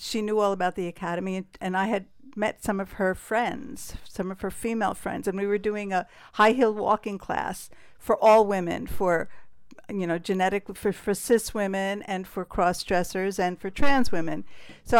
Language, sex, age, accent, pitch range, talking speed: English, female, 50-69, American, 185-225 Hz, 195 wpm